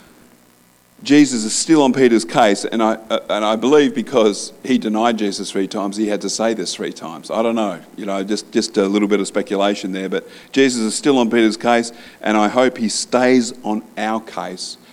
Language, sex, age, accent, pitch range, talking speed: English, male, 50-69, Australian, 95-125 Hz, 210 wpm